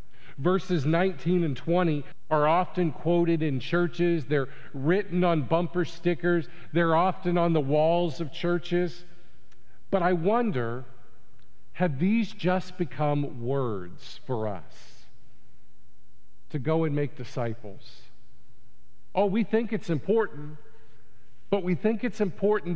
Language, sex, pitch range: English, male, 120-165 Hz